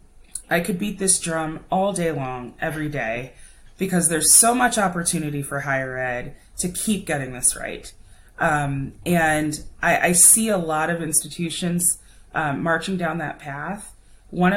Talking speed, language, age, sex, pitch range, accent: 155 wpm, English, 30-49, female, 145-180 Hz, American